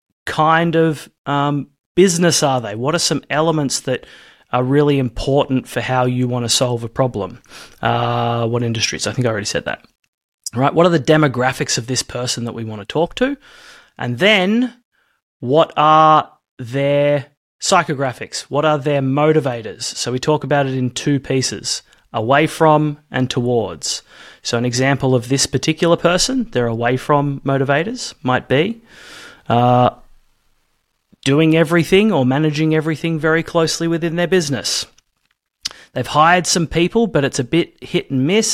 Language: English